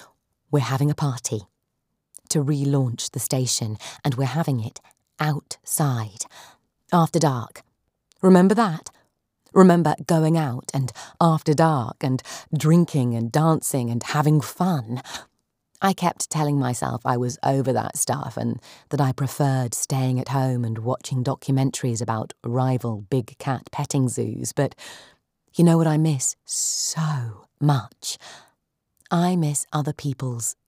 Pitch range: 125-160 Hz